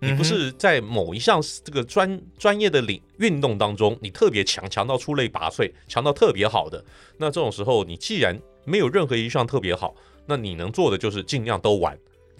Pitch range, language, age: 85-110 Hz, Chinese, 30-49